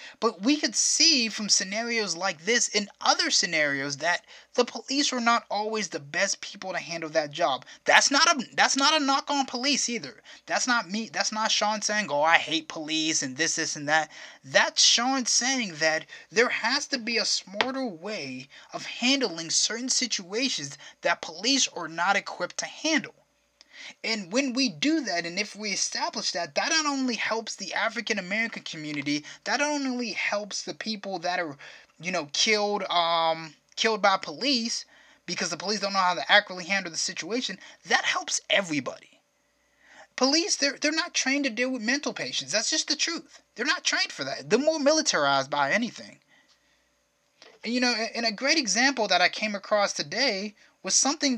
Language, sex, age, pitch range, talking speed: English, male, 20-39, 180-260 Hz, 180 wpm